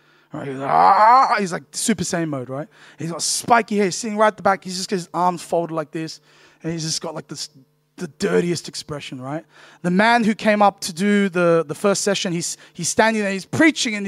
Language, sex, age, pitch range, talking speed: English, male, 20-39, 150-215 Hz, 235 wpm